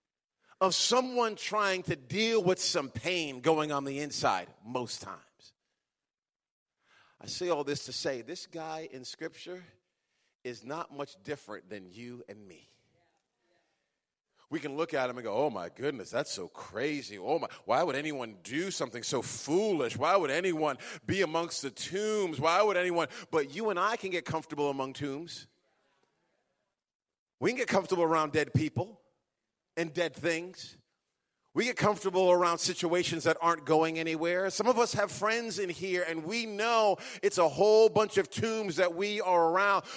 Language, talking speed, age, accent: English, 170 wpm, 40-59, American